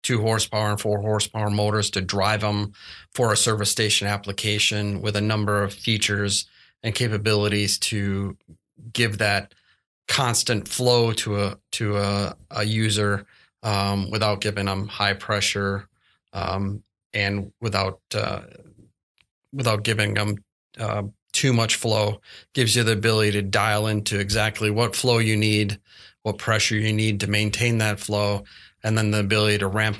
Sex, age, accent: male, 30-49, American